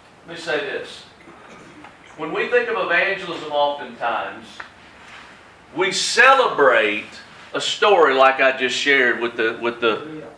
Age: 40-59